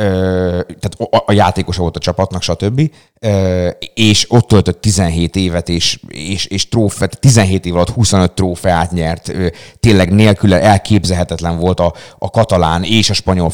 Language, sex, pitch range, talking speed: Hungarian, male, 90-110 Hz, 135 wpm